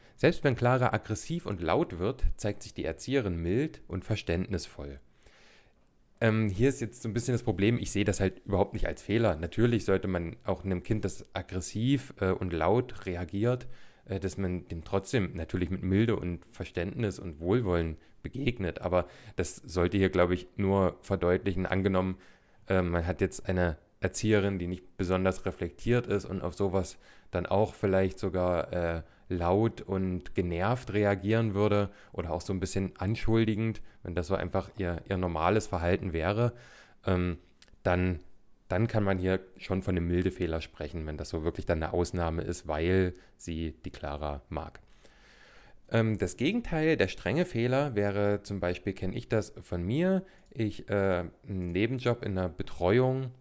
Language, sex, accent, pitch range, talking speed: German, male, German, 90-110 Hz, 170 wpm